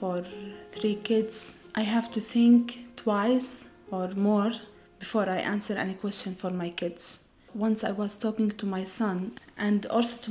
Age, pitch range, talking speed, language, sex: 30-49, 185-220 Hz, 165 wpm, English, female